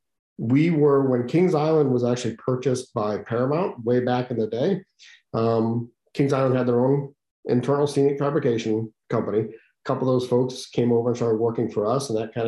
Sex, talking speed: male, 190 wpm